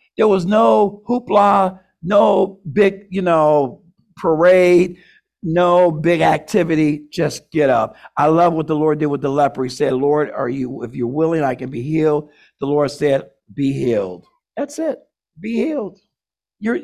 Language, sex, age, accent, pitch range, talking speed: English, male, 50-69, American, 155-210 Hz, 165 wpm